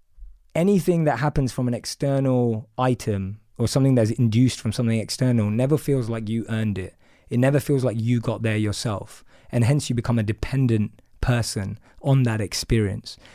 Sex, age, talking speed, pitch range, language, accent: male, 20-39, 170 wpm, 115-145 Hz, English, British